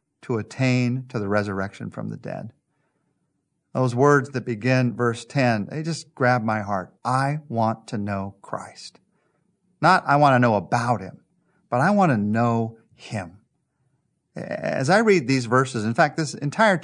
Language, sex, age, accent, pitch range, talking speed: English, male, 40-59, American, 110-140 Hz, 165 wpm